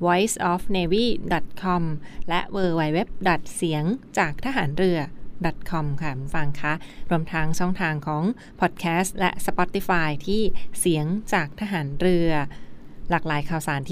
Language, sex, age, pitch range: Thai, female, 20-39, 165-195 Hz